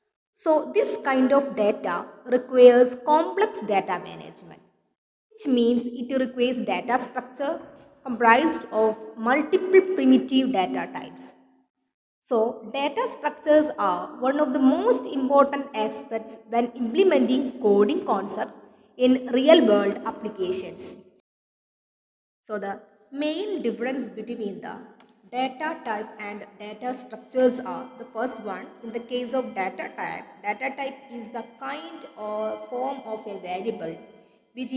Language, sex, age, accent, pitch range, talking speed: English, female, 20-39, Indian, 225-280 Hz, 125 wpm